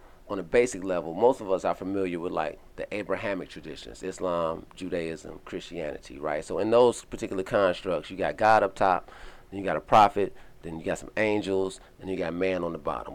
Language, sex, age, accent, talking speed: English, male, 40-59, American, 205 wpm